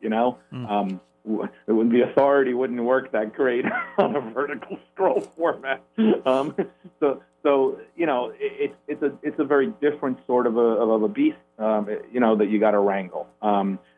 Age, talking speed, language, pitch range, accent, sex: 40-59, 180 wpm, English, 100-135 Hz, American, male